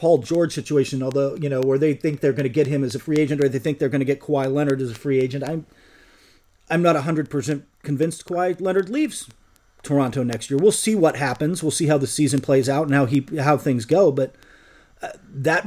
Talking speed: 240 wpm